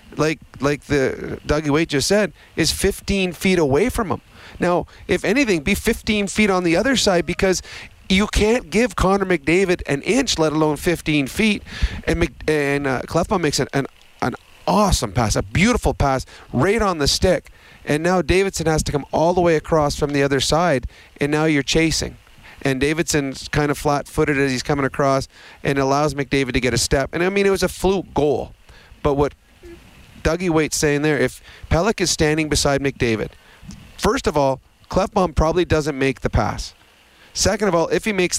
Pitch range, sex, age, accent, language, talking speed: 135-170 Hz, male, 40-59, American, English, 190 wpm